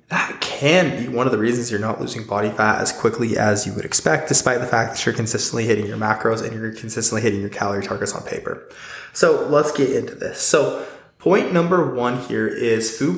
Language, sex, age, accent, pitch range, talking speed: English, male, 20-39, American, 110-140 Hz, 220 wpm